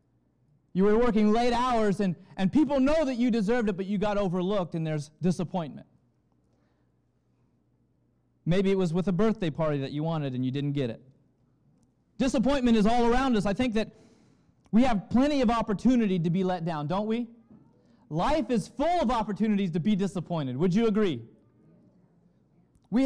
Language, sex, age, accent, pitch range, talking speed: English, male, 30-49, American, 180-250 Hz, 170 wpm